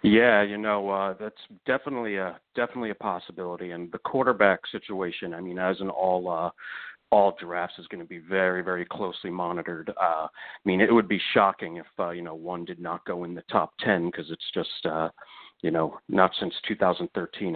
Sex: male